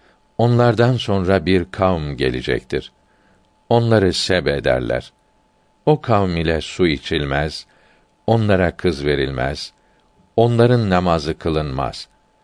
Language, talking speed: Turkish, 90 wpm